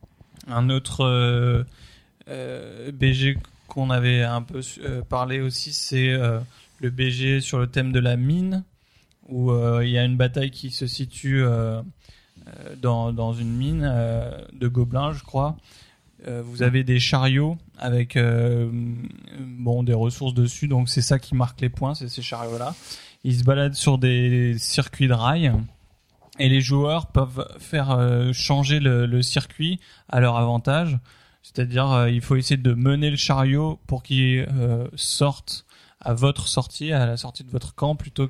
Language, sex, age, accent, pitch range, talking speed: French, male, 20-39, French, 120-135 Hz, 145 wpm